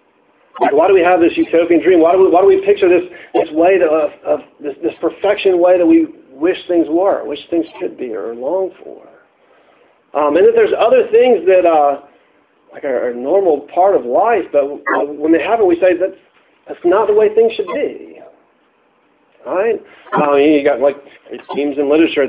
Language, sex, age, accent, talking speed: English, male, 50-69, American, 200 wpm